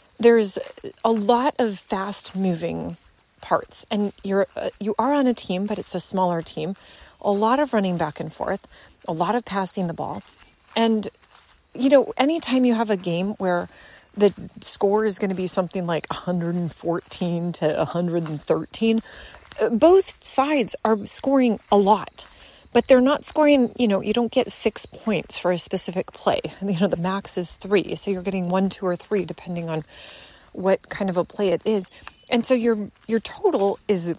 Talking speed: 180 wpm